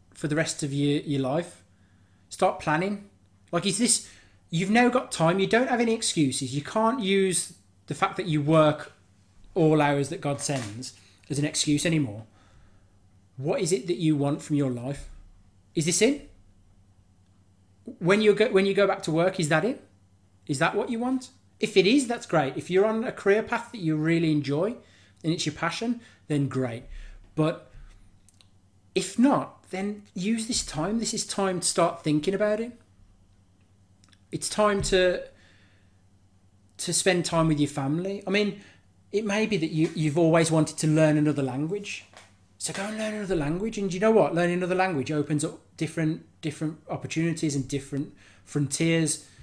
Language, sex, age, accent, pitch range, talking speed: English, male, 30-49, British, 110-185 Hz, 180 wpm